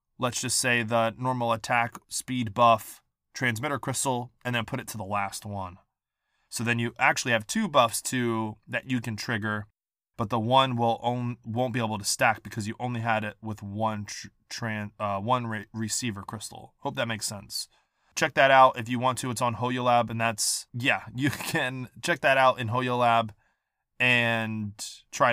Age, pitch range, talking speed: 20-39, 115-135 Hz, 190 wpm